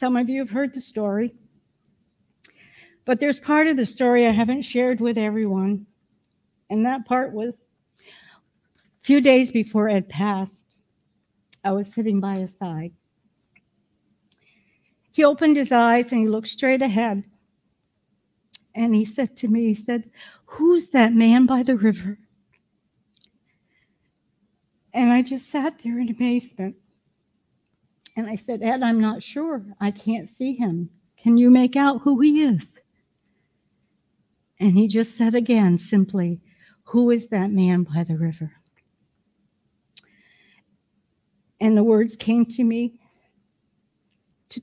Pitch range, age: 205-250 Hz, 60-79